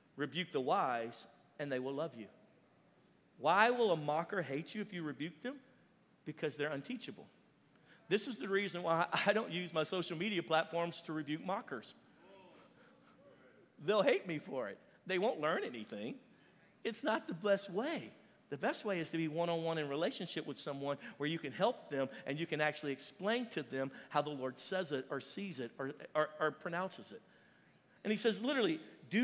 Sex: male